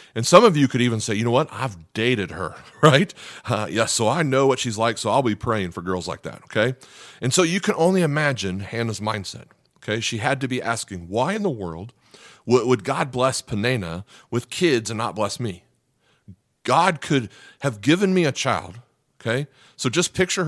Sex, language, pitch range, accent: male, English, 110-140 Hz, American